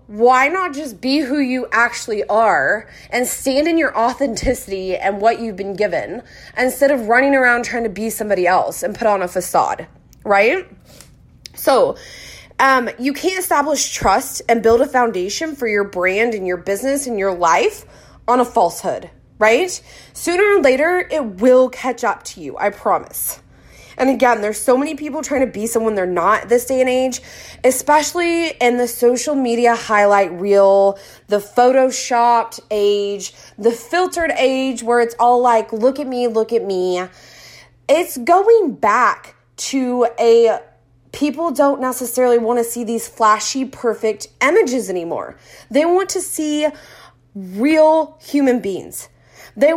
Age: 20-39